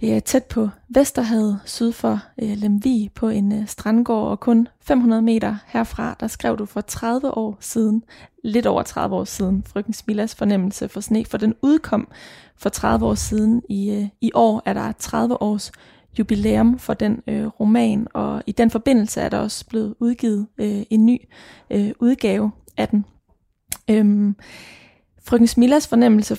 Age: 20-39